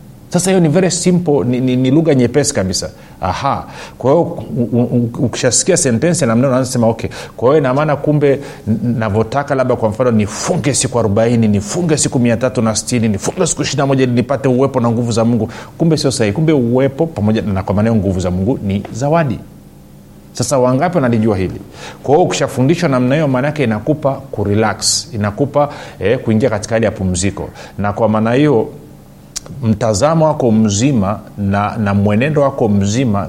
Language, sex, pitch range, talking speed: Swahili, male, 105-135 Hz, 155 wpm